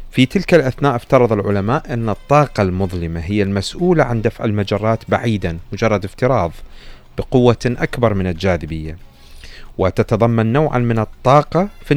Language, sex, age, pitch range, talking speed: Arabic, male, 40-59, 95-120 Hz, 125 wpm